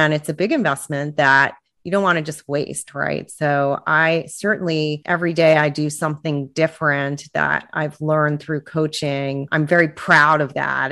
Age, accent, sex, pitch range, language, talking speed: 30-49, American, female, 145-170 Hz, English, 175 wpm